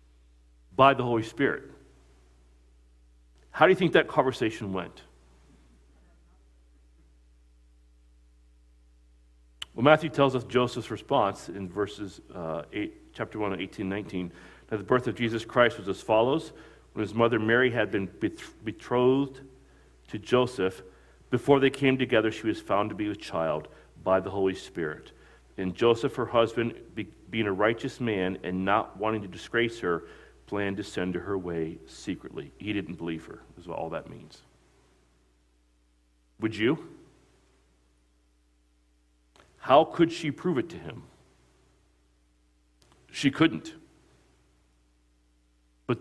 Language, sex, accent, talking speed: English, male, American, 130 wpm